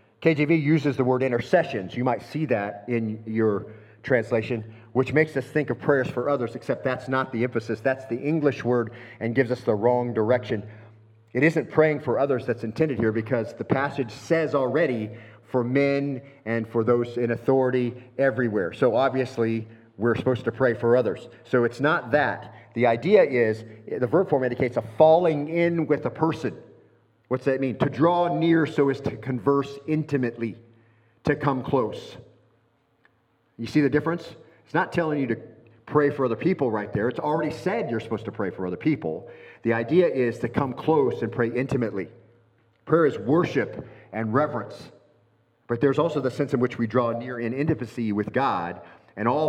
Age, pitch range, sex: 40-59, 115-140 Hz, male